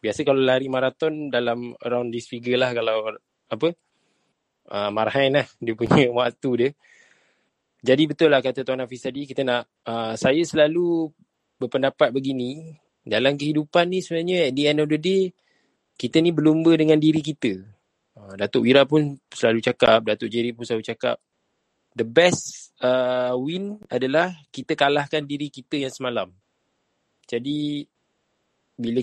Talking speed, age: 145 wpm, 20-39